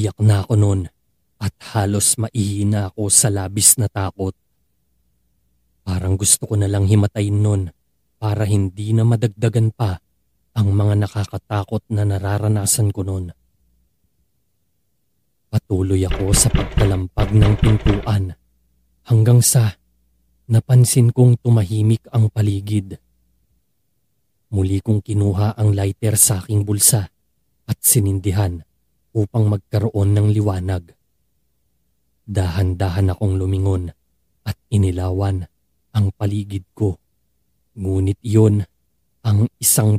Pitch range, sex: 95-110 Hz, male